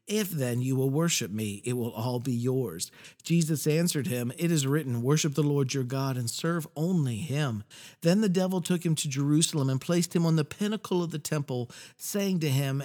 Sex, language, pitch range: male, English, 130-175 Hz